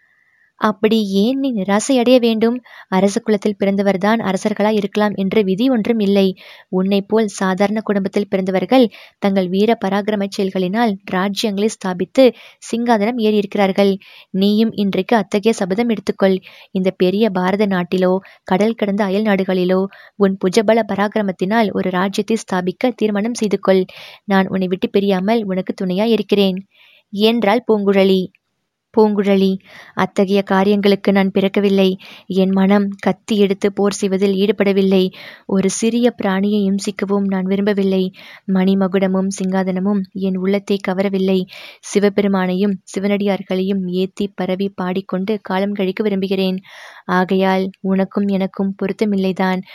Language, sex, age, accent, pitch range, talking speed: Tamil, female, 20-39, native, 190-215 Hz, 110 wpm